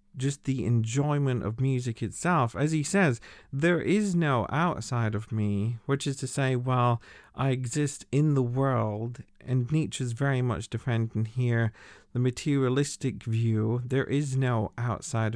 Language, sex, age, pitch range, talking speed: English, male, 40-59, 115-145 Hz, 150 wpm